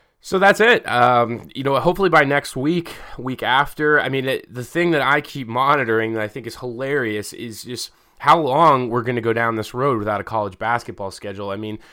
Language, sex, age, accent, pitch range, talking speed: English, male, 20-39, American, 110-130 Hz, 220 wpm